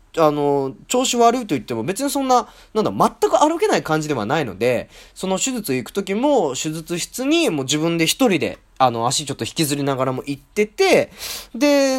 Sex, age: male, 20-39